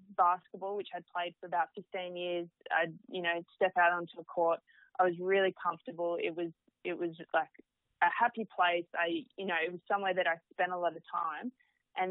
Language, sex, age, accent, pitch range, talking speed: English, female, 20-39, Australian, 175-190 Hz, 210 wpm